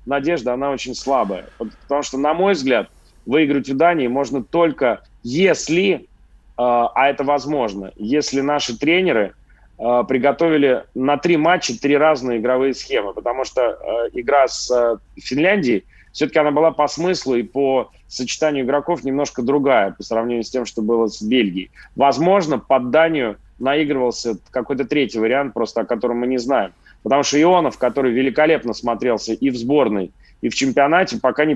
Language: Russian